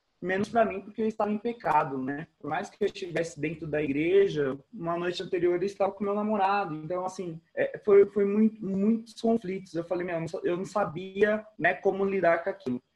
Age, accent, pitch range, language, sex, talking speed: 20-39, Brazilian, 135-165 Hz, Portuguese, male, 200 wpm